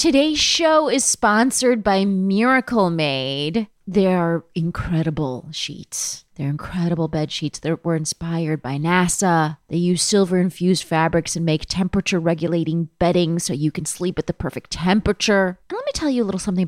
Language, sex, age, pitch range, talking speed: English, female, 30-49, 170-260 Hz, 155 wpm